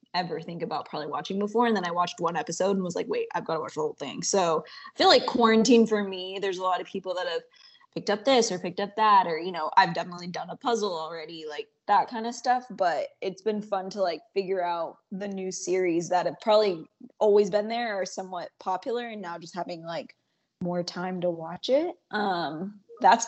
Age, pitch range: 20-39, 180-220 Hz